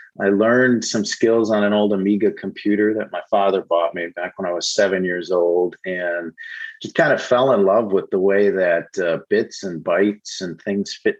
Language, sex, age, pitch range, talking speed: English, male, 40-59, 95-110 Hz, 210 wpm